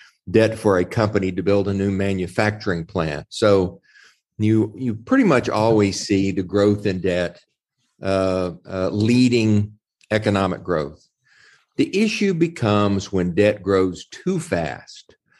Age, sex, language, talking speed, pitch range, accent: 50-69, male, English, 135 wpm, 95-110 Hz, American